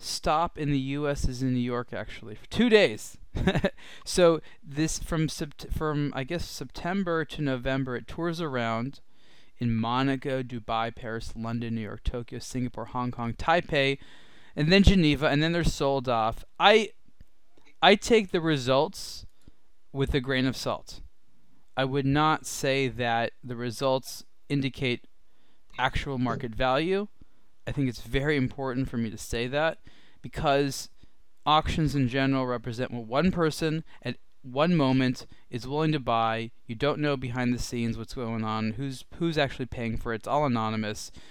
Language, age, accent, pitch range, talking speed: English, 20-39, American, 115-145 Hz, 155 wpm